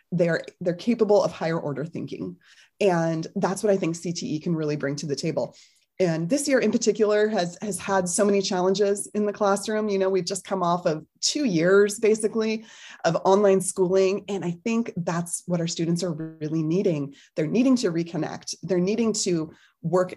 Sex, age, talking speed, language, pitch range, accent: female, 20-39, 190 wpm, English, 160-205 Hz, American